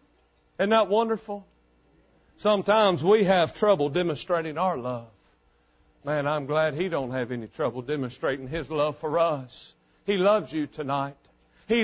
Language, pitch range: English, 135-230 Hz